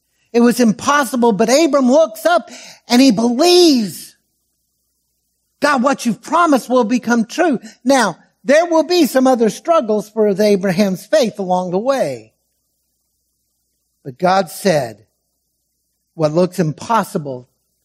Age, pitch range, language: 60-79, 135-220 Hz, English